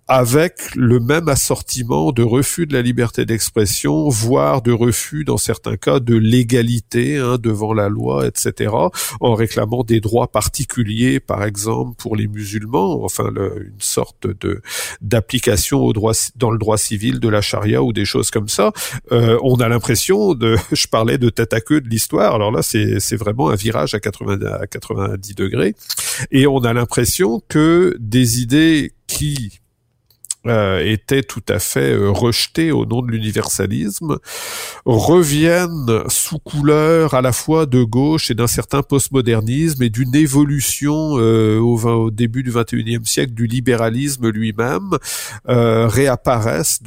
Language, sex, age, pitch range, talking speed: French, male, 50-69, 110-130 Hz, 155 wpm